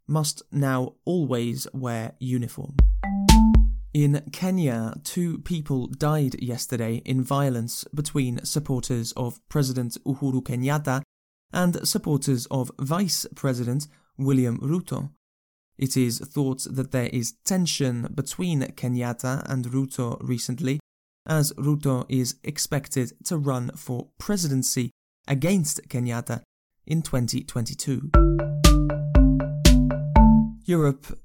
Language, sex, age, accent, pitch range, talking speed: English, male, 20-39, British, 125-150 Hz, 100 wpm